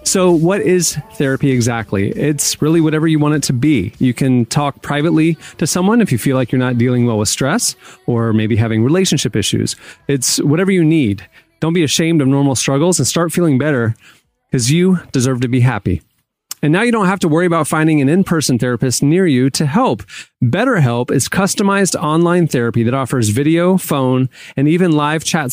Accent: American